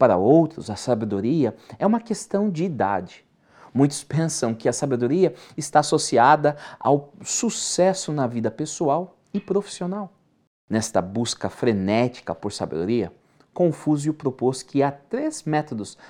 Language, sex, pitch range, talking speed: Portuguese, male, 115-175 Hz, 125 wpm